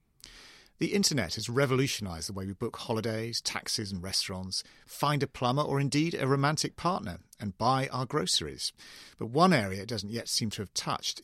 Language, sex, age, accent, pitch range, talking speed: English, male, 40-59, British, 95-130 Hz, 180 wpm